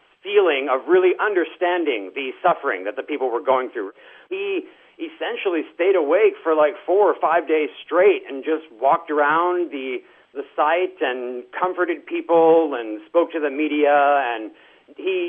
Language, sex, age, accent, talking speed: English, male, 50-69, American, 155 wpm